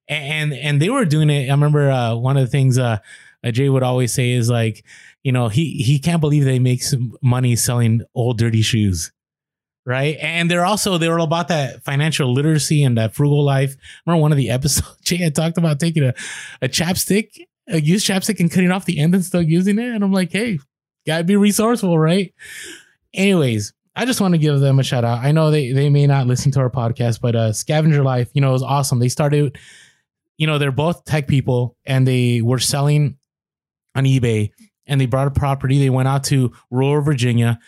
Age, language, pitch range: 20-39, English, 125-160 Hz